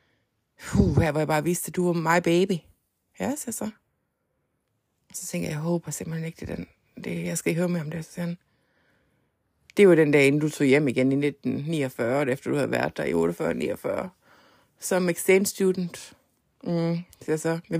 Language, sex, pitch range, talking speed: Danish, female, 160-200 Hz, 205 wpm